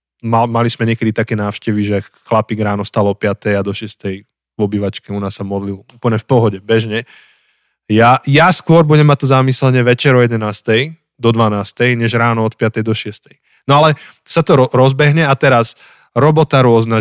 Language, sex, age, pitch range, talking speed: Slovak, male, 20-39, 105-130 Hz, 190 wpm